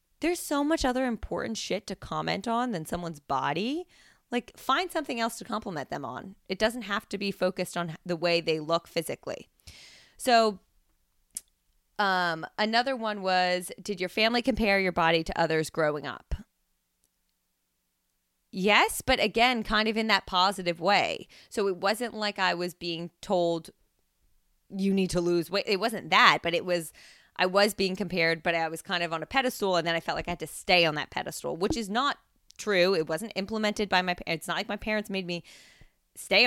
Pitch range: 165-210 Hz